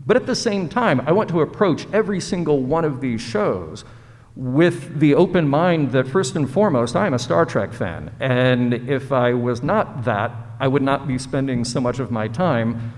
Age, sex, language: 50-69, male, English